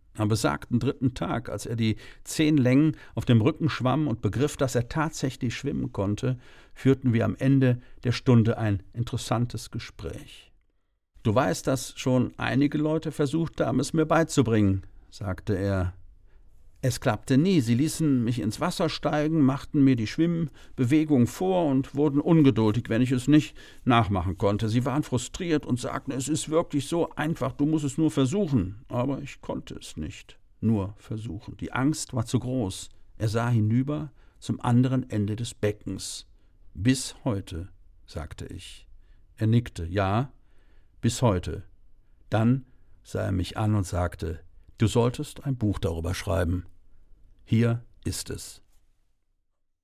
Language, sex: German, male